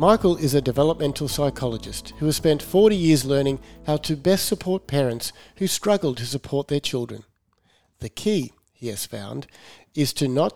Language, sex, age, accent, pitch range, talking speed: English, male, 50-69, Australian, 125-160 Hz, 170 wpm